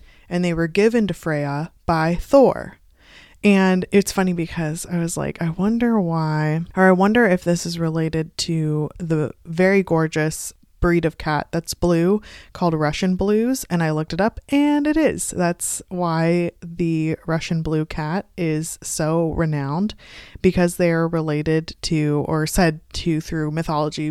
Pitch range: 155-185 Hz